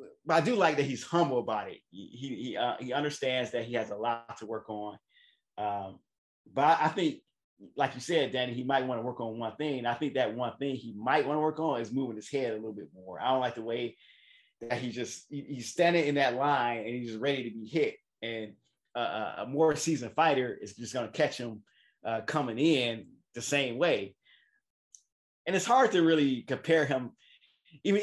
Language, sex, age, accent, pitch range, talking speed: English, male, 30-49, American, 120-160 Hz, 210 wpm